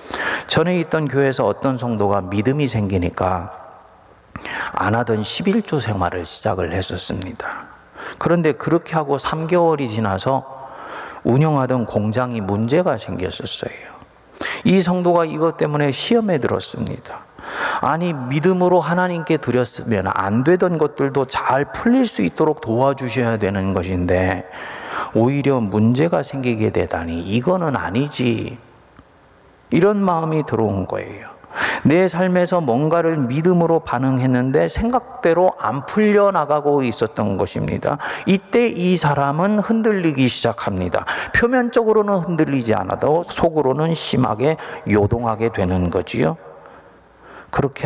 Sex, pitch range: male, 105-165 Hz